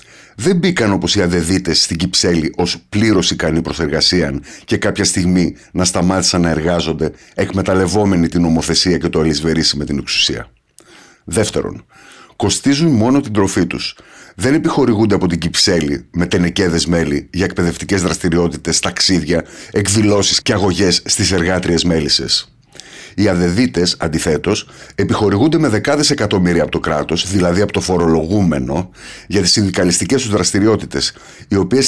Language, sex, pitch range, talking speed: Greek, male, 85-105 Hz, 135 wpm